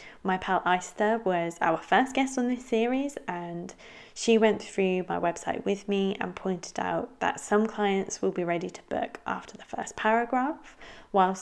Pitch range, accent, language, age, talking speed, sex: 175-220 Hz, British, English, 20-39, 180 wpm, female